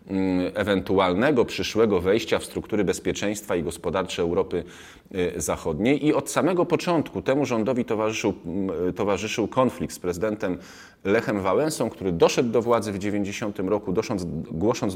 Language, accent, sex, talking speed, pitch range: Polish, native, male, 130 wpm, 95-115 Hz